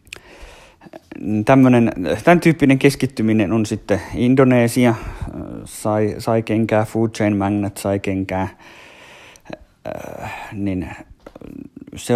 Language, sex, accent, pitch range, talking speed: Finnish, male, native, 100-120 Hz, 80 wpm